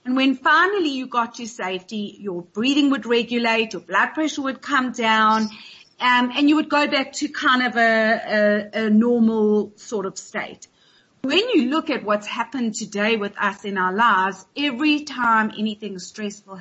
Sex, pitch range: female, 210-270 Hz